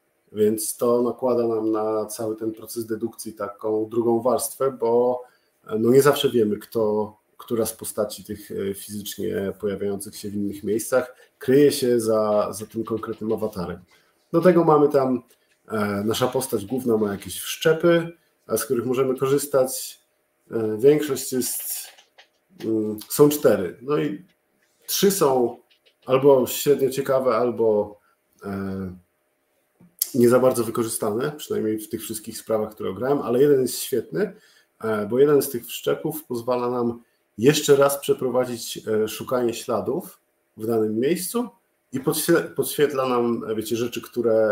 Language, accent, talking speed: Polish, native, 130 wpm